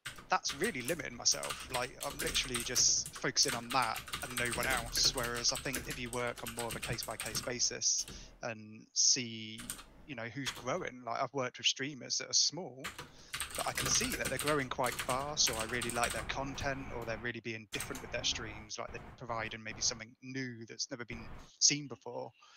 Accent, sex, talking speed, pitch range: British, male, 200 wpm, 115-130 Hz